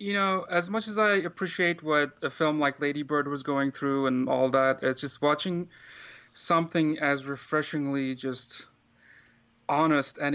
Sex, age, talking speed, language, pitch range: male, 30-49, 160 wpm, English, 135-150 Hz